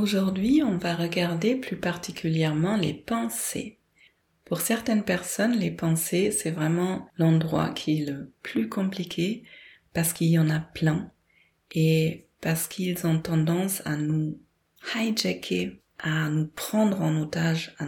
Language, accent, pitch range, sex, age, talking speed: French, French, 160-195 Hz, female, 30-49, 140 wpm